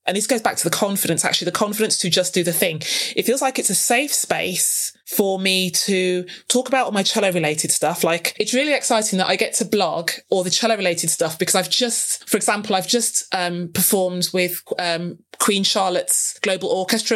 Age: 20-39